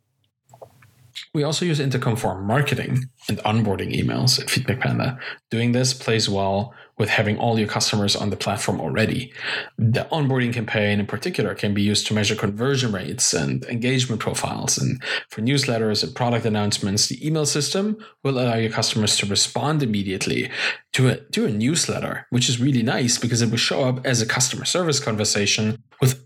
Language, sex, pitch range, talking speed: English, male, 110-135 Hz, 175 wpm